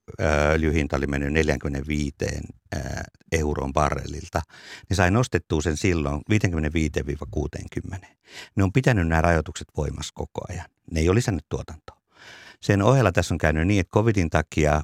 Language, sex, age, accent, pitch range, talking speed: Finnish, male, 60-79, native, 75-95 Hz, 140 wpm